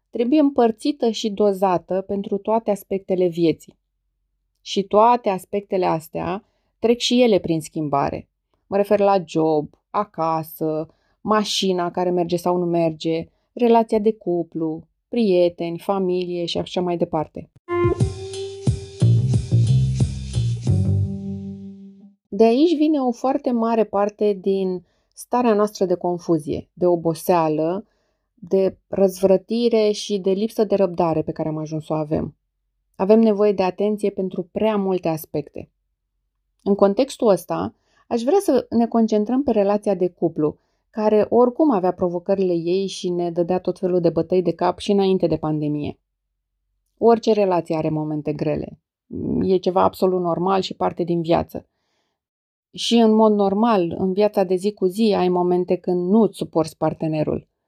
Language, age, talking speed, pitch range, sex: Romanian, 20-39, 135 wpm, 170-210 Hz, female